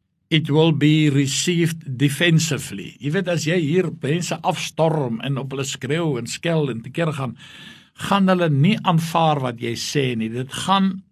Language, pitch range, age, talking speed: English, 140-175 Hz, 60-79, 160 wpm